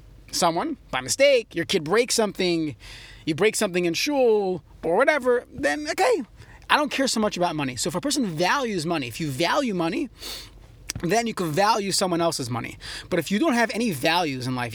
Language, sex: English, male